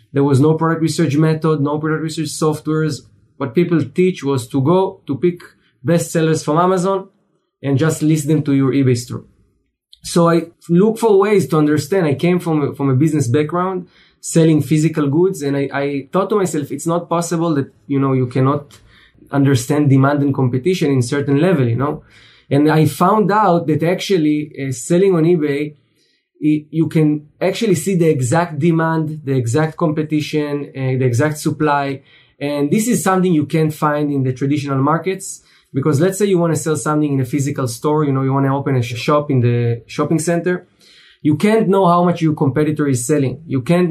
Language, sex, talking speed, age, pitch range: English, male, 195 wpm, 20-39, 140-170 Hz